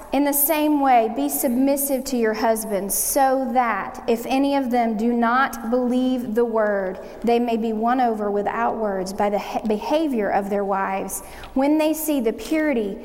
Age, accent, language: 30-49, American, English